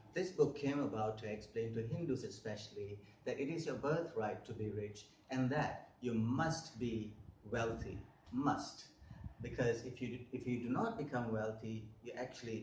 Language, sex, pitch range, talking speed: English, male, 110-125 Hz, 165 wpm